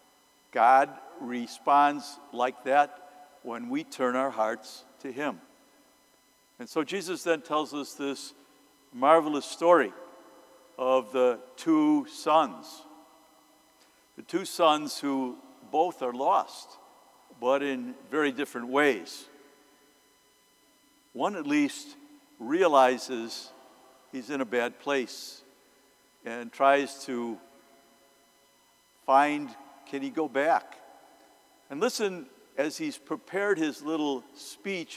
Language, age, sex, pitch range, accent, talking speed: English, 60-79, male, 130-160 Hz, American, 105 wpm